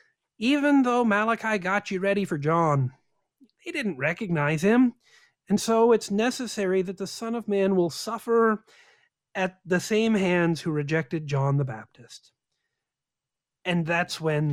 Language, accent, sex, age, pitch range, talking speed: English, American, male, 40-59, 150-215 Hz, 145 wpm